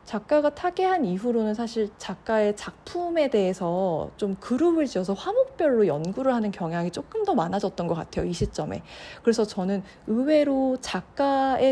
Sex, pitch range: female, 185-275 Hz